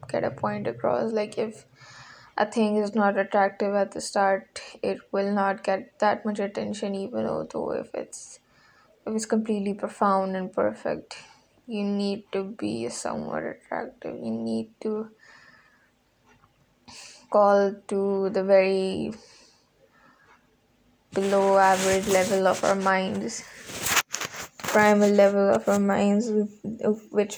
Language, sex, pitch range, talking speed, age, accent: English, female, 195-210 Hz, 125 wpm, 10-29, Indian